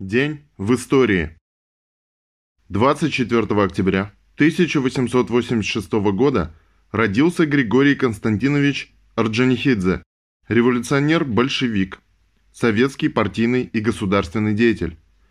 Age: 10-29